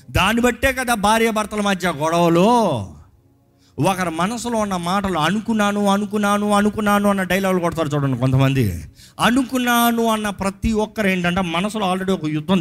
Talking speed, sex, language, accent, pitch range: 130 wpm, male, Telugu, native, 145-230 Hz